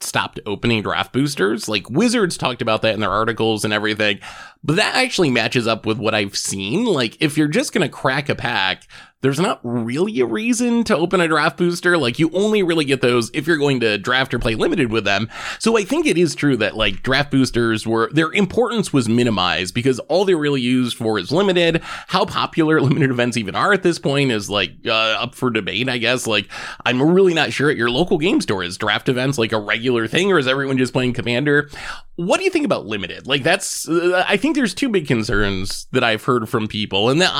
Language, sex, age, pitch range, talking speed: English, male, 20-39, 110-170 Hz, 230 wpm